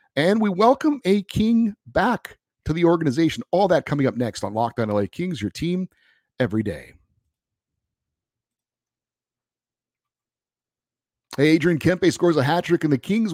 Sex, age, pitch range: male, 50-69, 105-155 Hz